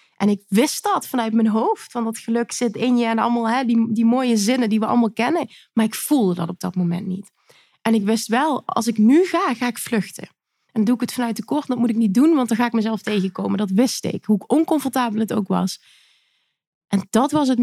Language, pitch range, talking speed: Dutch, 210-255 Hz, 245 wpm